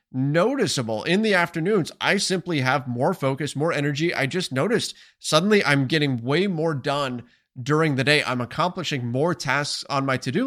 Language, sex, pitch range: English, male, 130-165 Hz